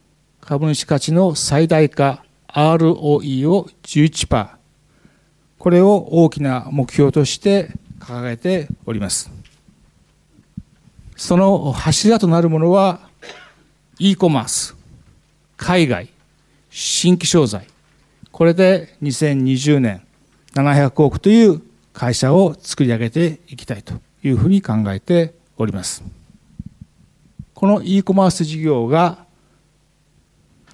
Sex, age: male, 60-79